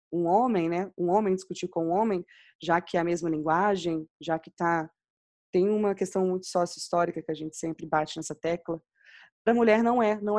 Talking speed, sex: 200 wpm, female